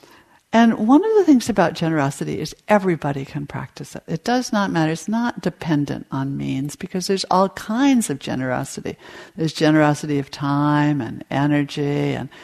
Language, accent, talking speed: English, American, 165 wpm